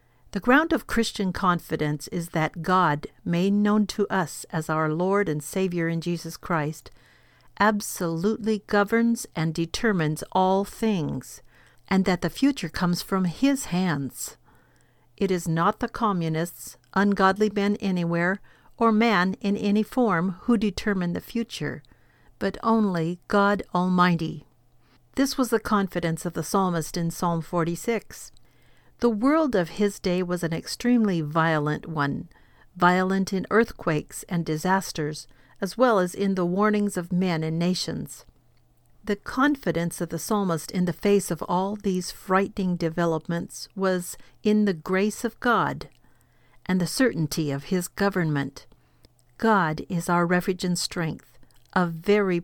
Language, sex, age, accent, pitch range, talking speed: English, female, 50-69, American, 165-205 Hz, 140 wpm